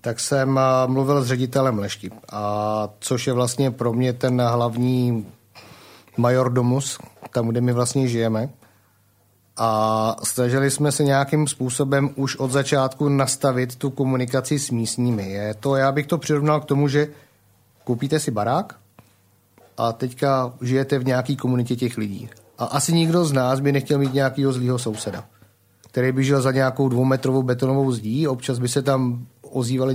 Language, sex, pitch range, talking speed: Slovak, male, 115-140 Hz, 155 wpm